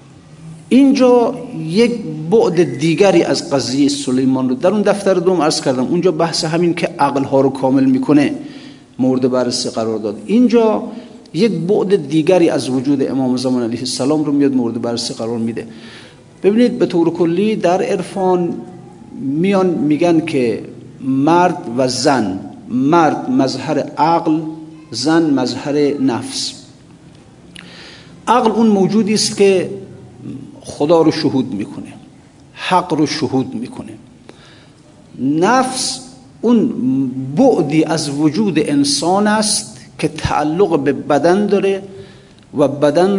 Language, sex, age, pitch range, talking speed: Persian, male, 50-69, 140-200 Hz, 120 wpm